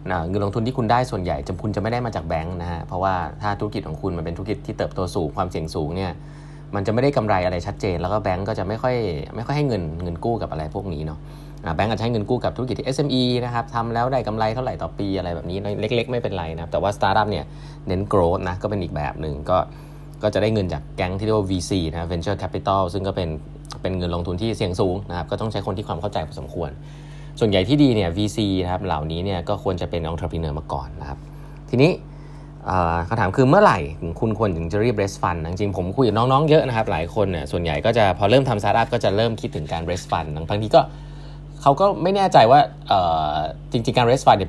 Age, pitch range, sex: 20-39, 85-120 Hz, male